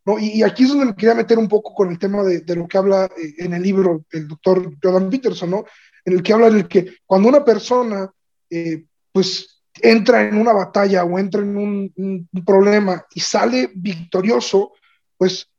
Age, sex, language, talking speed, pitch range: 30-49, male, Spanish, 195 wpm, 185-220 Hz